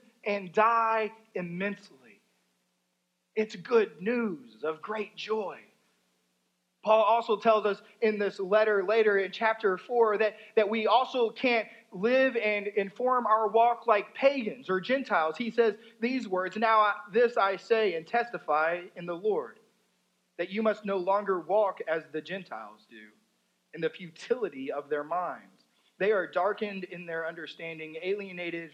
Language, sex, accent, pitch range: English, male, American, 145-220 Hz